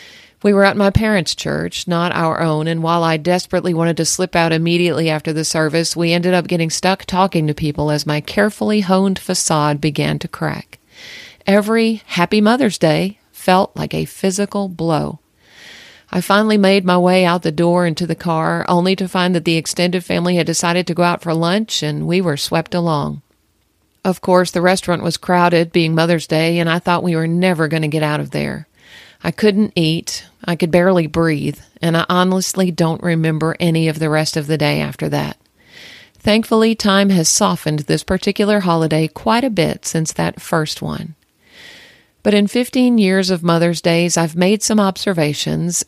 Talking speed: 185 wpm